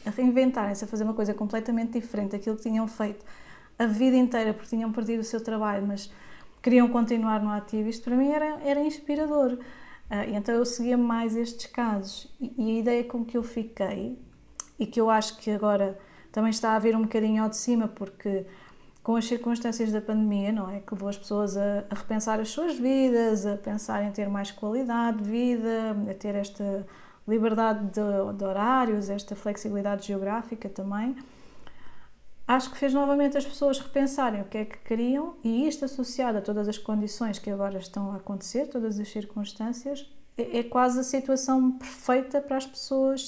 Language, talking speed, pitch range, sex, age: Portuguese, 190 wpm, 210-245 Hz, female, 20-39